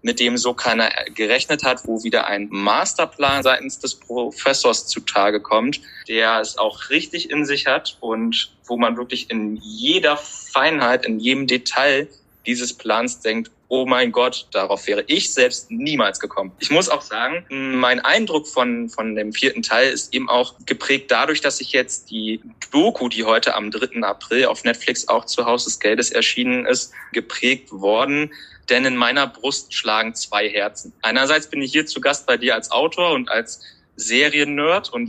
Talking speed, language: 175 wpm, German